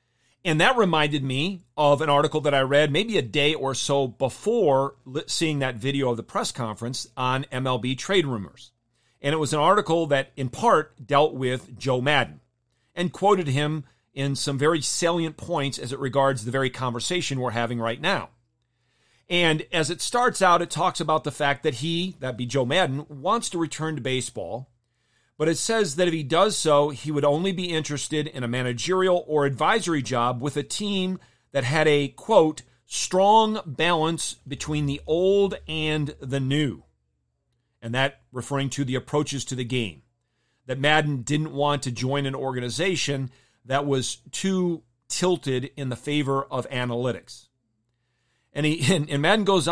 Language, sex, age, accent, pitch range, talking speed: English, male, 40-59, American, 125-160 Hz, 175 wpm